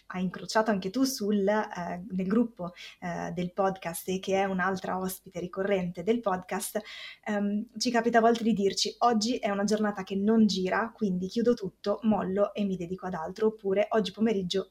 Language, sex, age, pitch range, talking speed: Italian, female, 20-39, 190-230 Hz, 190 wpm